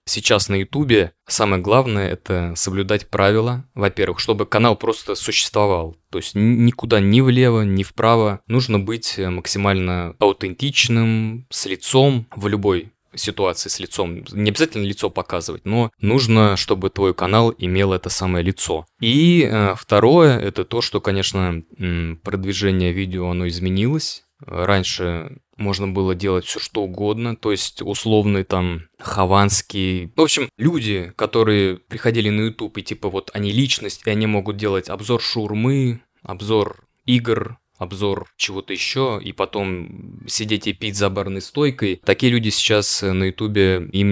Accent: native